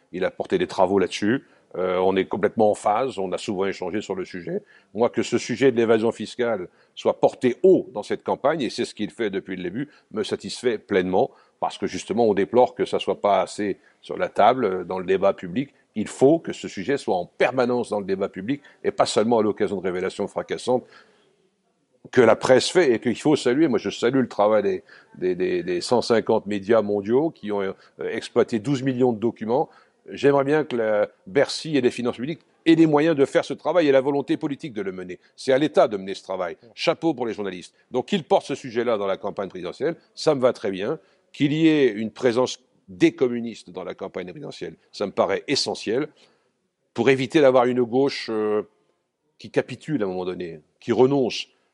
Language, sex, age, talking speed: French, male, 60-79, 215 wpm